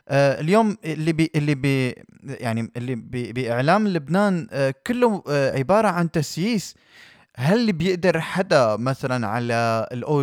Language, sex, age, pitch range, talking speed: Arabic, male, 20-39, 135-185 Hz, 105 wpm